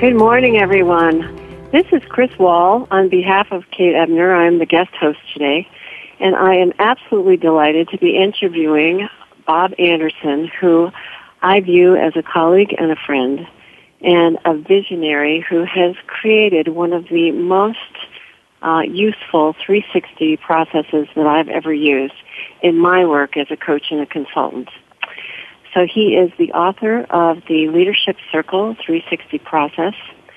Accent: American